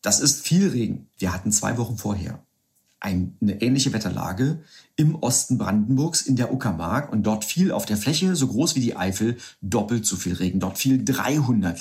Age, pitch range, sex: 40-59, 105-150 Hz, male